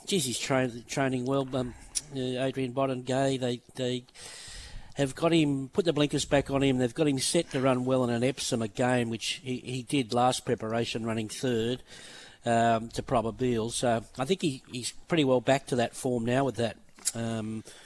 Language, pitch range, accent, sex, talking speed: English, 115-135 Hz, Australian, male, 190 wpm